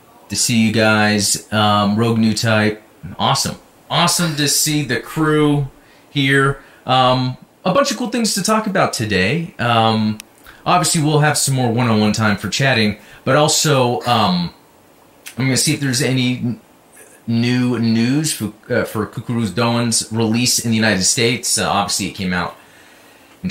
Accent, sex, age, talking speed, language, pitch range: American, male, 30-49, 160 wpm, English, 105-150 Hz